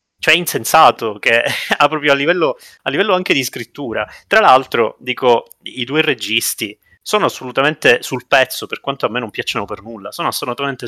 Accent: native